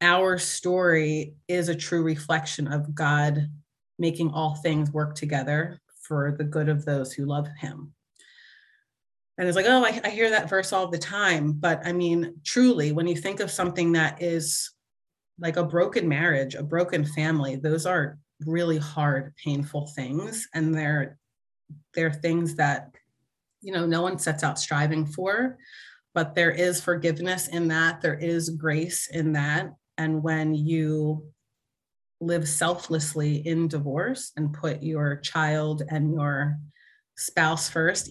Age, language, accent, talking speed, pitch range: 30-49, English, American, 150 wpm, 150-175 Hz